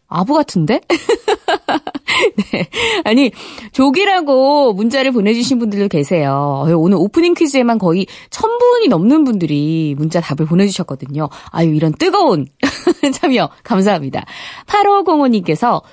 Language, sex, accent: Korean, female, native